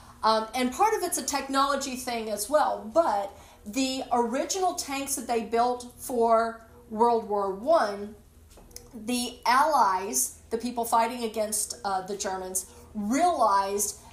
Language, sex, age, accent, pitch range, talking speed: English, female, 40-59, American, 225-275 Hz, 130 wpm